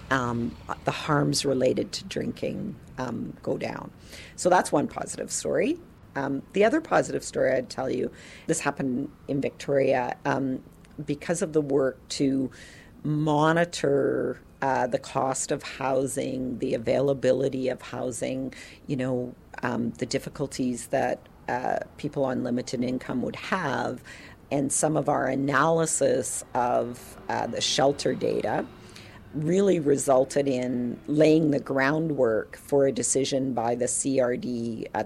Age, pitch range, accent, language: 50-69, 130-150 Hz, American, English